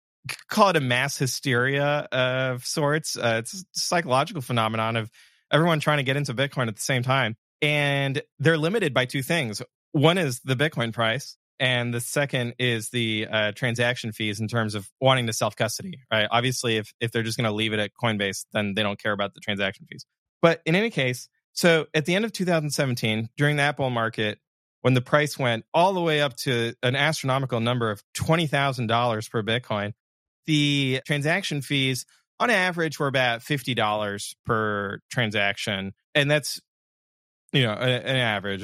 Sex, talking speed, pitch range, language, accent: male, 180 wpm, 115-145 Hz, English, American